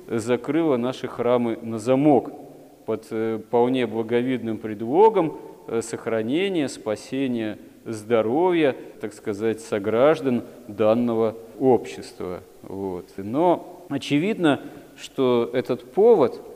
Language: Russian